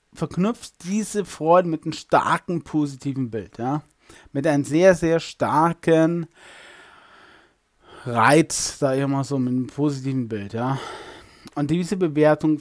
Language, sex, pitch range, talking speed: German, male, 130-165 Hz, 130 wpm